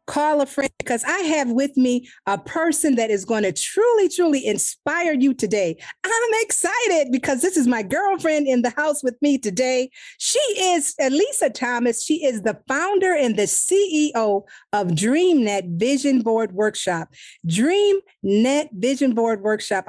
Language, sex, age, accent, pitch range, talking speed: English, female, 40-59, American, 215-300 Hz, 155 wpm